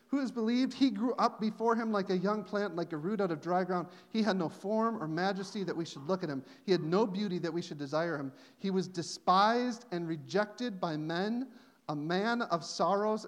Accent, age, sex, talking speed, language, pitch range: American, 40-59, male, 230 wpm, English, 165-240 Hz